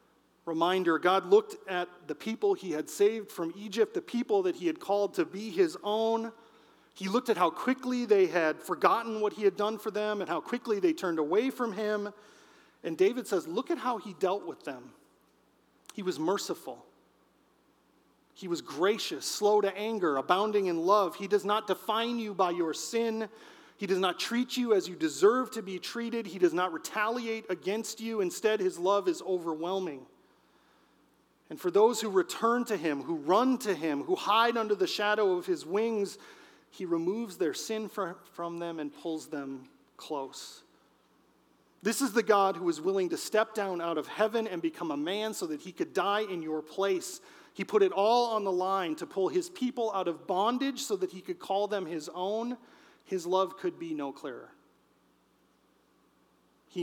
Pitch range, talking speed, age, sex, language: 185-245 Hz, 190 wpm, 40-59, male, English